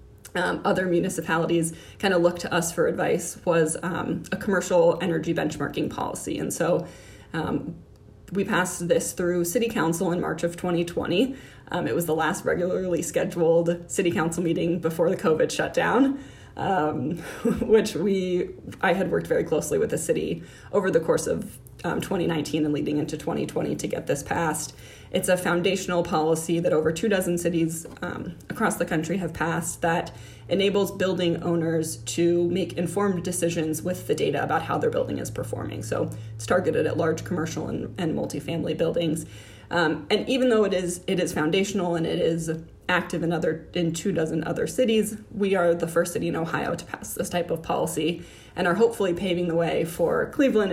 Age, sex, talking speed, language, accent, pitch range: 20-39, female, 175 wpm, English, American, 165-190 Hz